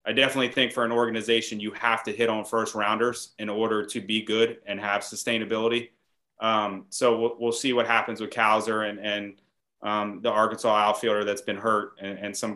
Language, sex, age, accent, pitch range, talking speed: English, male, 30-49, American, 105-120 Hz, 200 wpm